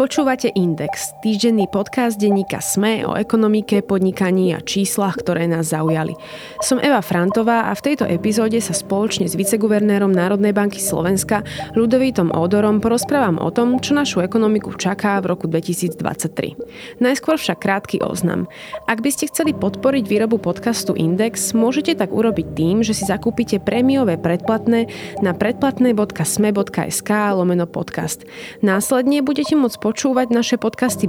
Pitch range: 185-235 Hz